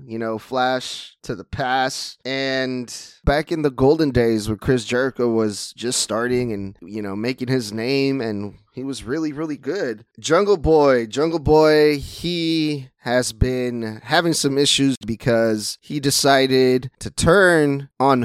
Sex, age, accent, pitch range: male, 20-39, American, 125-155 Hz